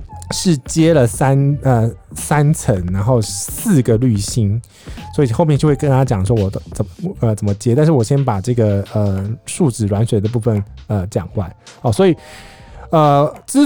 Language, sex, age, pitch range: Chinese, male, 20-39, 105-140 Hz